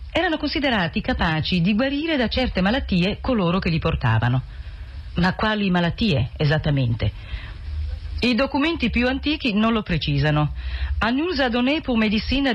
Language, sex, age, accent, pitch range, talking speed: Italian, female, 40-59, native, 155-230 Hz, 130 wpm